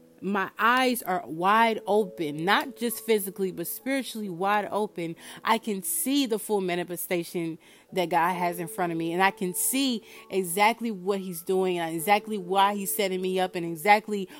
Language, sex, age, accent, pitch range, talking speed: English, female, 30-49, American, 180-225 Hz, 175 wpm